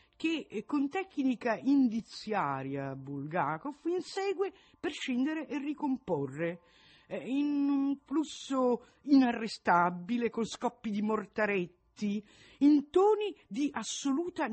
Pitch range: 180-290 Hz